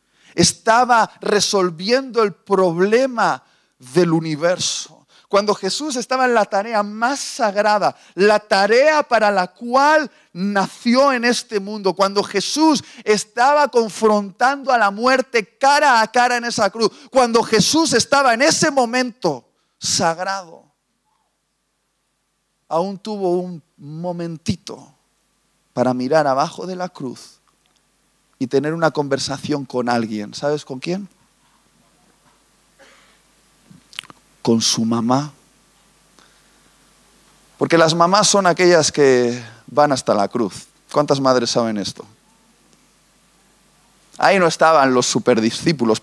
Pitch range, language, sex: 145-225 Hz, Spanish, male